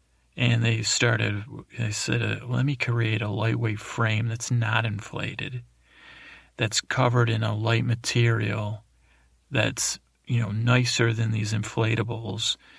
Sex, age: male, 40-59